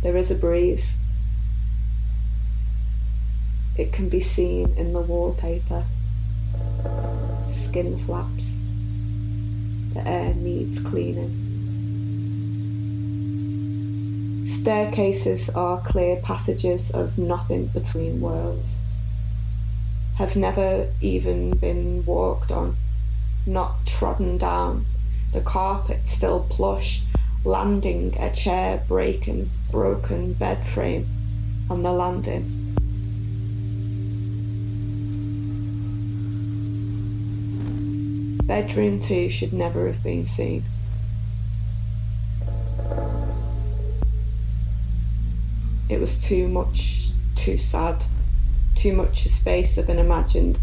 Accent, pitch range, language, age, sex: British, 90-110 Hz, Korean, 20-39, female